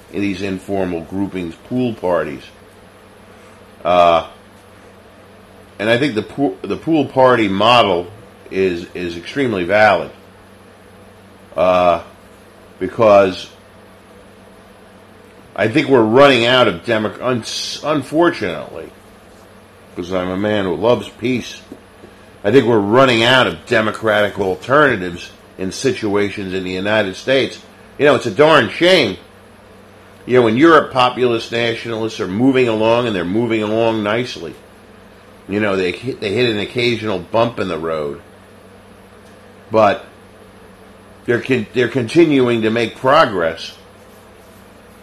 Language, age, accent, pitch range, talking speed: English, 50-69, American, 100-120 Hz, 120 wpm